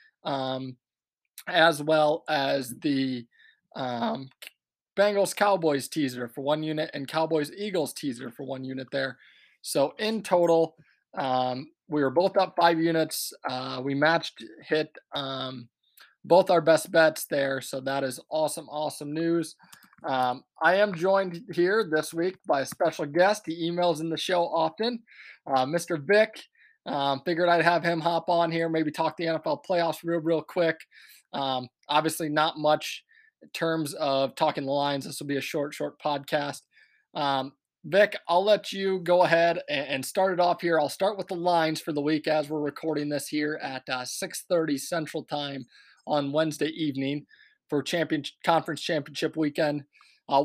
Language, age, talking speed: English, 20-39, 165 wpm